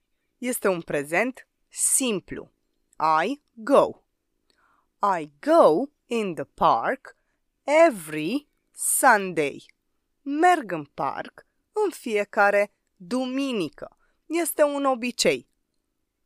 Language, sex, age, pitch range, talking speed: Romanian, female, 20-39, 190-315 Hz, 80 wpm